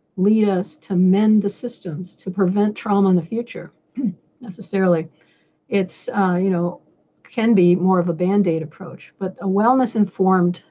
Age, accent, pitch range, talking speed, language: 50-69, American, 175-200 Hz, 150 wpm, English